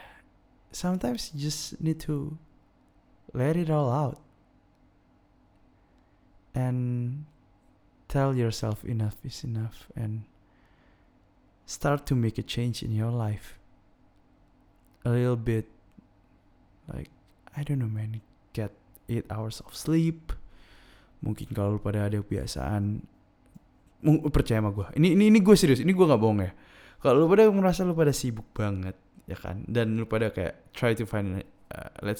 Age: 20-39